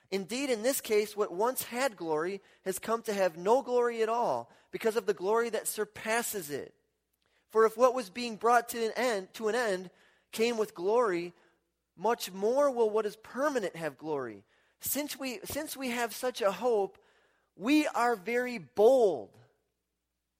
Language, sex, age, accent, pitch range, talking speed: English, male, 30-49, American, 205-260 Hz, 170 wpm